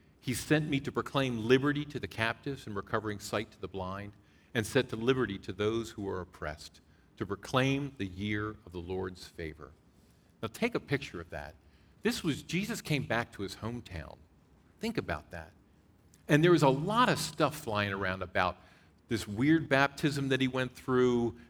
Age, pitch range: 50-69, 95-135 Hz